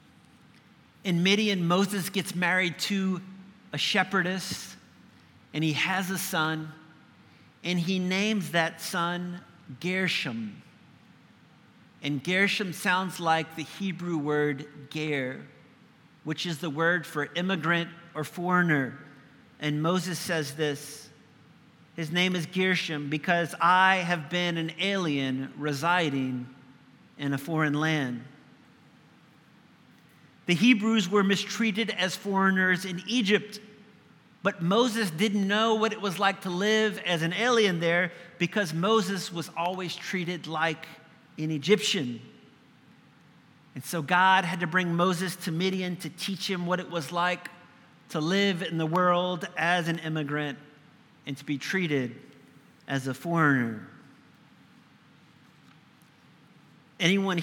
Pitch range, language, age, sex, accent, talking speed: 155-190 Hz, English, 50-69, male, American, 120 wpm